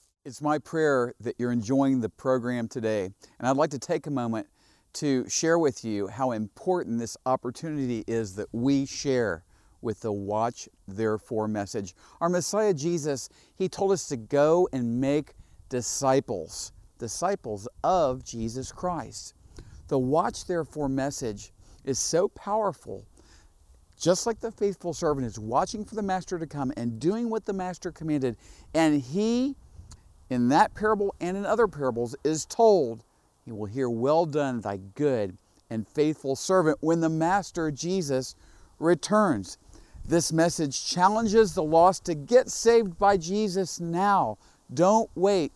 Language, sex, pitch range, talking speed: English, male, 115-190 Hz, 150 wpm